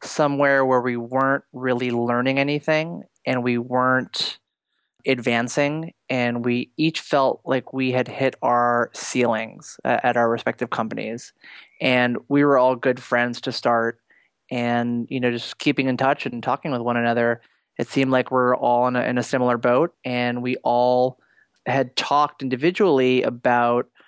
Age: 20-39